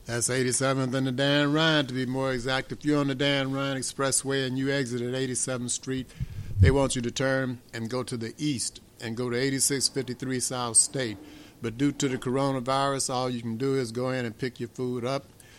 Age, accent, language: 60-79, American, English